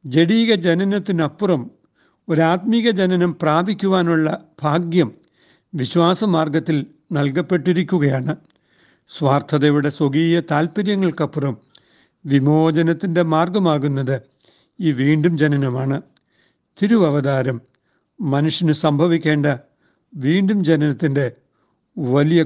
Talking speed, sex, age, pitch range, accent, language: 60 wpm, male, 60-79, 145-175 Hz, native, Malayalam